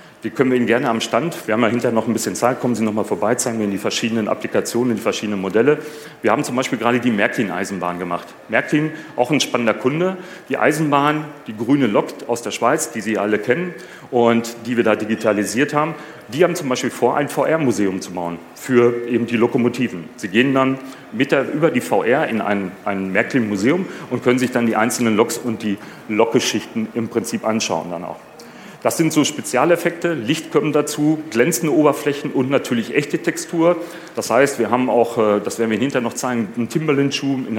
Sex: male